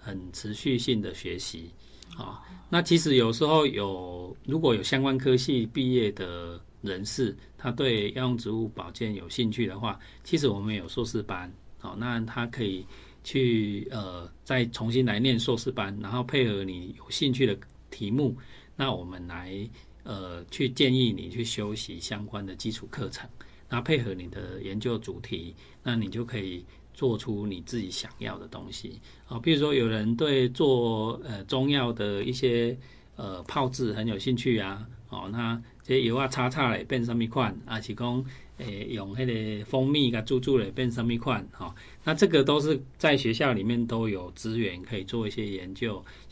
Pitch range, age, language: 100-125 Hz, 40-59, Chinese